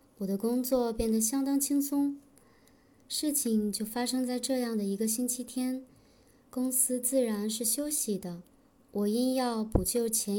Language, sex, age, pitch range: Chinese, male, 20-39, 215-260 Hz